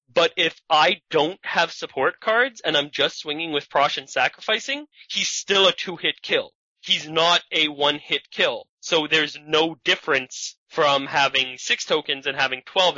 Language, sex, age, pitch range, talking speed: English, male, 20-39, 140-195 Hz, 165 wpm